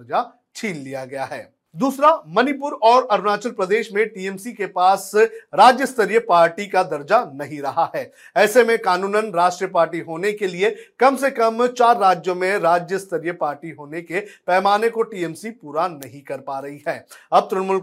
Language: Hindi